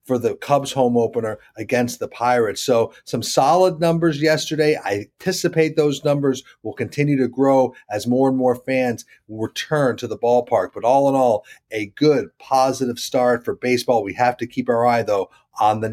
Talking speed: 185 wpm